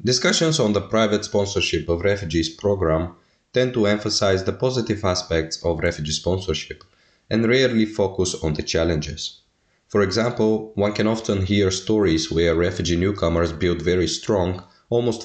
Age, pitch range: 30-49, 85-110 Hz